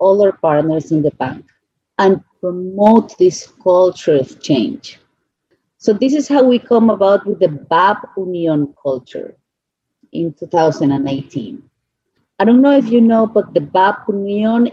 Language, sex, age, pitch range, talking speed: English, female, 40-59, 170-230 Hz, 145 wpm